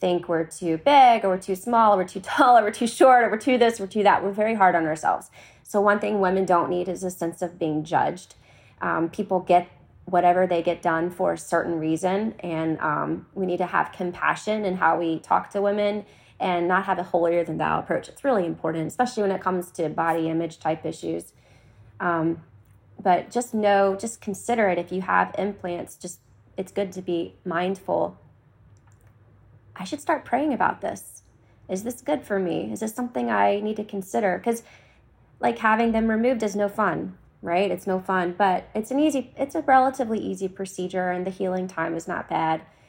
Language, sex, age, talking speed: English, female, 20-39, 205 wpm